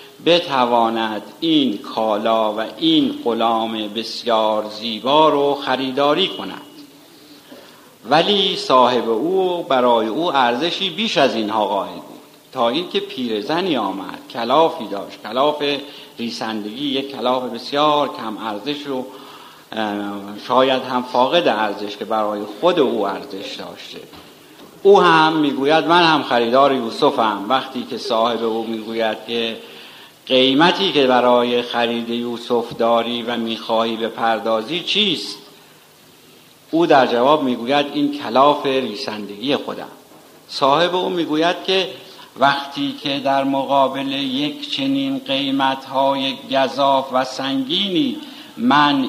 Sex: male